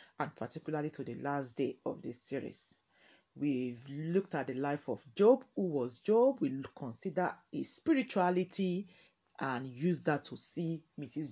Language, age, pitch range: English, 40-59, 140-180 Hz